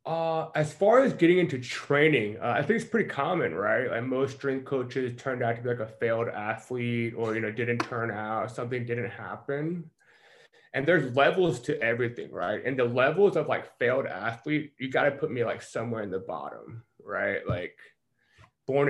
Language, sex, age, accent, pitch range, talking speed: English, male, 20-39, American, 115-145 Hz, 195 wpm